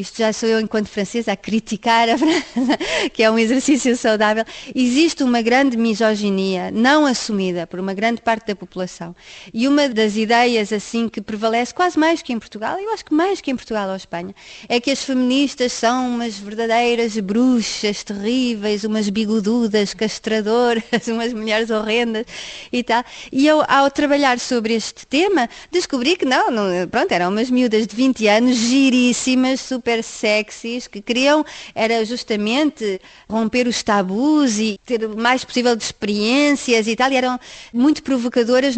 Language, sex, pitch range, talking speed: Portuguese, female, 220-265 Hz, 165 wpm